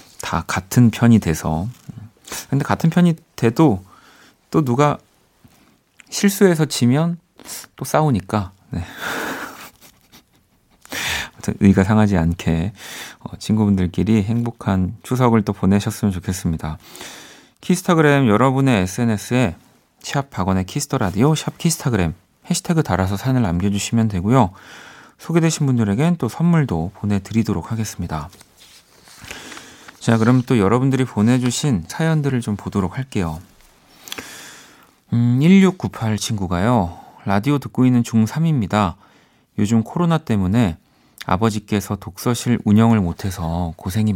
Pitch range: 95-125 Hz